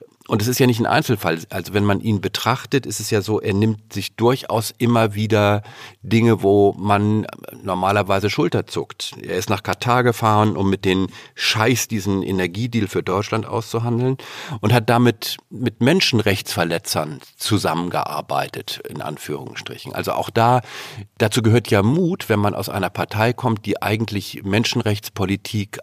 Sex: male